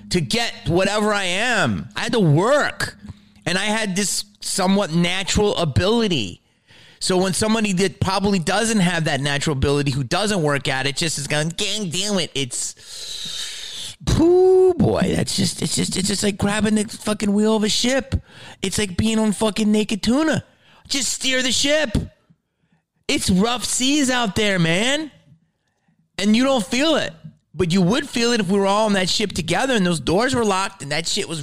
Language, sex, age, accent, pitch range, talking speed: English, male, 30-49, American, 160-230 Hz, 185 wpm